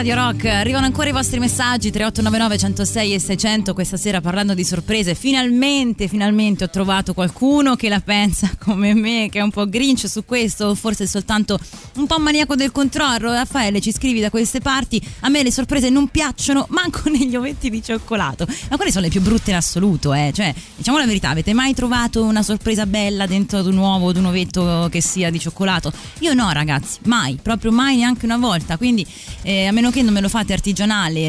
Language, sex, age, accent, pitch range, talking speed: Italian, female, 20-39, native, 175-240 Hz, 205 wpm